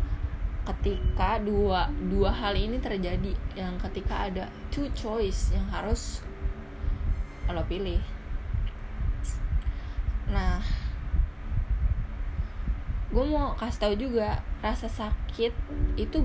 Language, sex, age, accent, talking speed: Indonesian, female, 20-39, native, 90 wpm